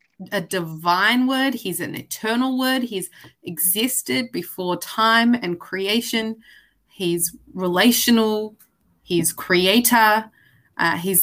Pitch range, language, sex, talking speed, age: 175-225 Hz, English, female, 100 wpm, 20-39